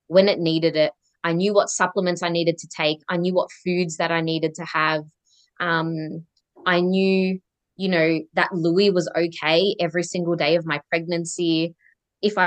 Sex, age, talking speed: female, 20-39, 180 wpm